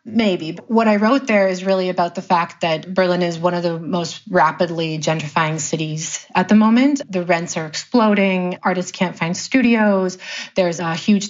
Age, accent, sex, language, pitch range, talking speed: 30-49, American, female, English, 170-200 Hz, 180 wpm